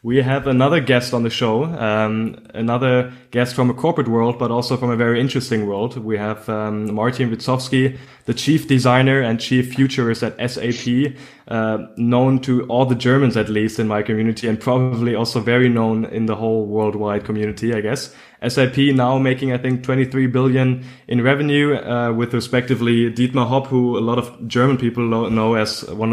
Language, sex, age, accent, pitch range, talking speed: English, male, 20-39, German, 115-130 Hz, 185 wpm